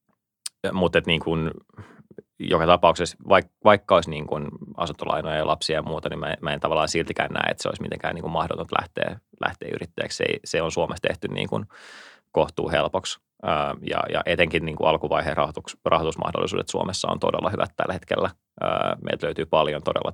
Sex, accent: male, native